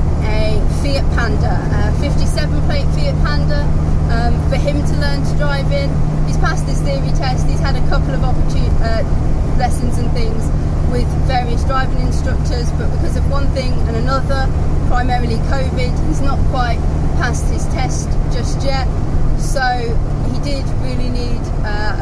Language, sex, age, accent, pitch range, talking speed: English, female, 20-39, British, 75-105 Hz, 160 wpm